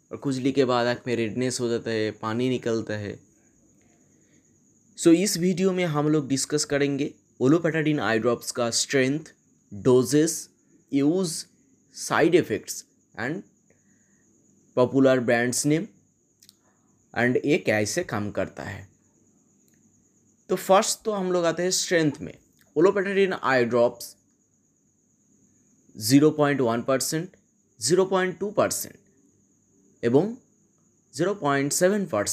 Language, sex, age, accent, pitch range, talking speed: Bengali, male, 20-39, native, 125-170 Hz, 105 wpm